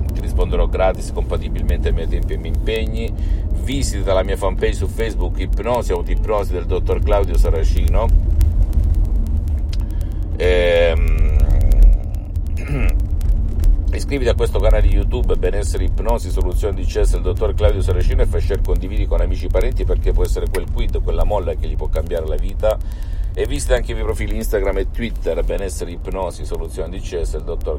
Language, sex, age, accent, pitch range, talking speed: Italian, male, 50-69, native, 80-95 Hz, 160 wpm